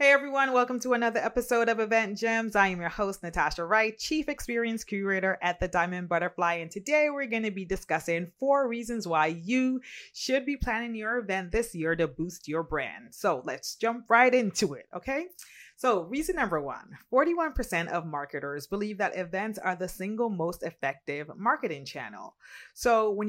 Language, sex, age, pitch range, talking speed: English, female, 30-49, 165-225 Hz, 180 wpm